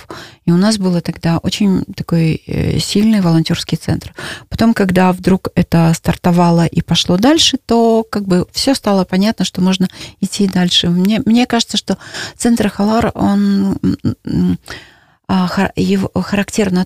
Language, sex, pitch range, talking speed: Russian, female, 175-210 Hz, 130 wpm